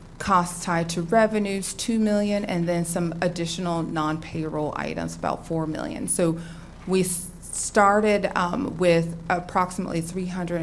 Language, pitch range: English, 160-185 Hz